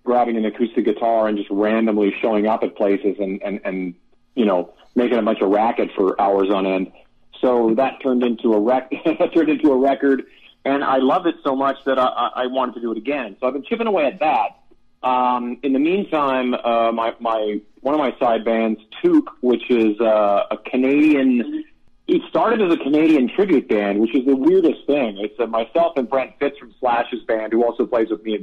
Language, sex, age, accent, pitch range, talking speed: English, male, 40-59, American, 110-135 Hz, 215 wpm